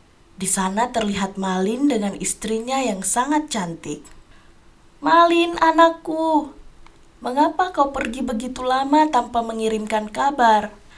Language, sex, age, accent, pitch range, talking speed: Indonesian, female, 20-39, native, 185-245 Hz, 105 wpm